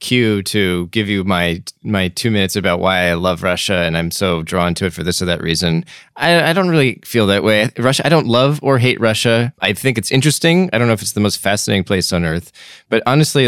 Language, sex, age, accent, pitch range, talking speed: English, male, 20-39, American, 90-130 Hz, 245 wpm